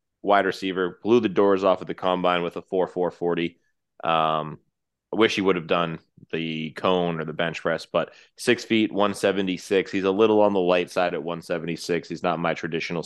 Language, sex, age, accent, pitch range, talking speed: English, male, 20-39, American, 80-90 Hz, 205 wpm